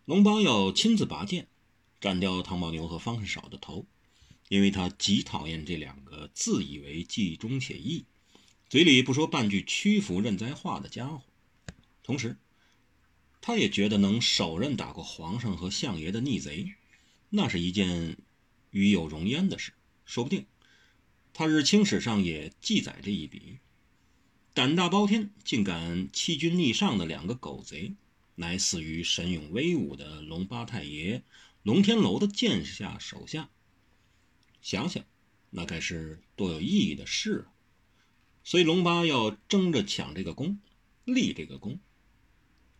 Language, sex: Chinese, male